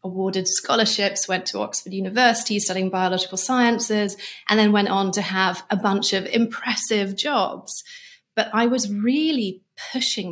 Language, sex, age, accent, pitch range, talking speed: English, female, 30-49, British, 195-245 Hz, 145 wpm